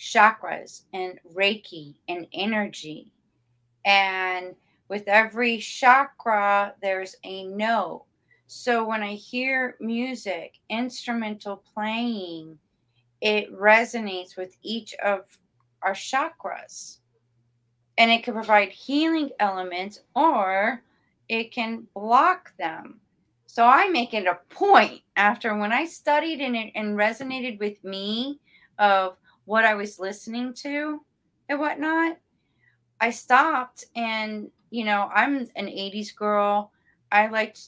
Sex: female